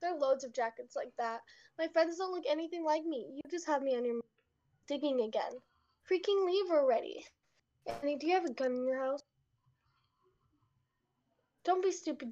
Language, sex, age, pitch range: English, female, 10-29, 255-355 Hz